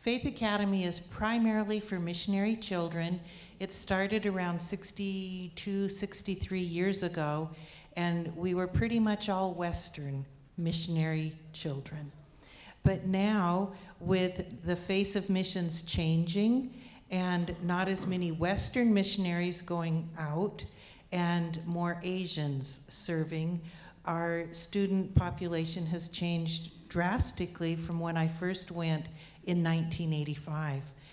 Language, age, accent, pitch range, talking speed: English, 60-79, American, 160-190 Hz, 110 wpm